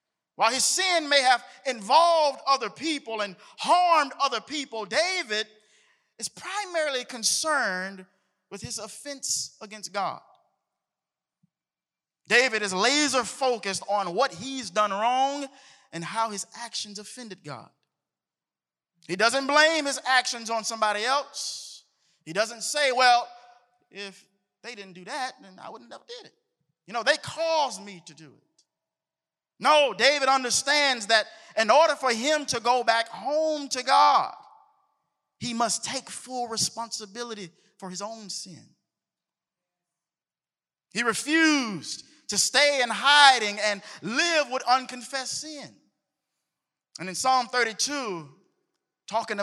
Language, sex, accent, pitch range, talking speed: English, male, American, 195-275 Hz, 130 wpm